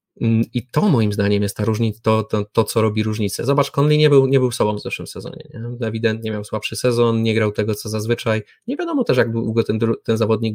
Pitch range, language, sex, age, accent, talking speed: 105-120 Hz, Polish, male, 20-39, native, 215 wpm